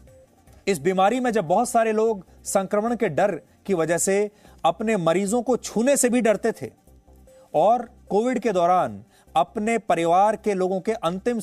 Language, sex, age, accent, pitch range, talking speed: English, male, 30-49, Indian, 160-220 Hz, 165 wpm